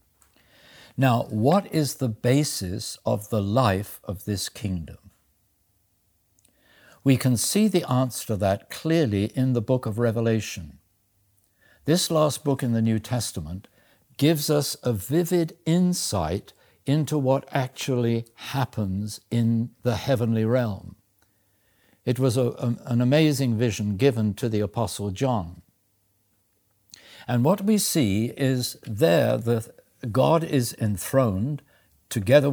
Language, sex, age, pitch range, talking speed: English, male, 60-79, 100-135 Hz, 120 wpm